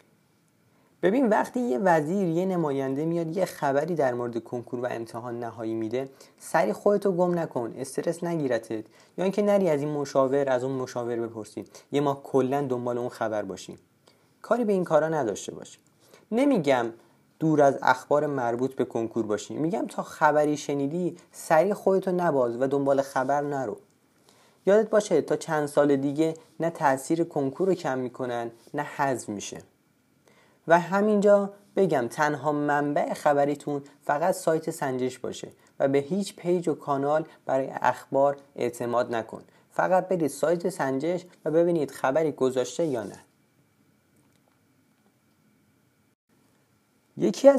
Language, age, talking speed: Persian, 30-49, 140 wpm